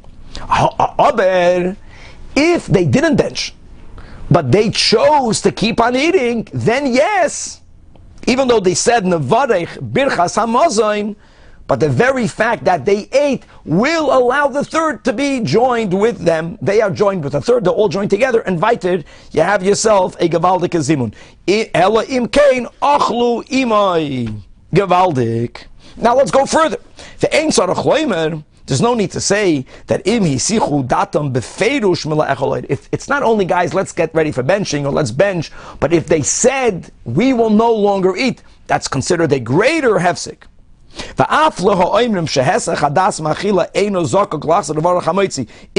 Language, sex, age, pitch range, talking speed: English, male, 50-69, 165-230 Hz, 125 wpm